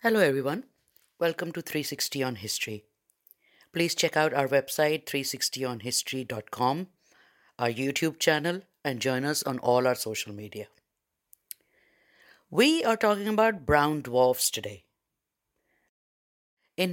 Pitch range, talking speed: 135-185 Hz, 115 wpm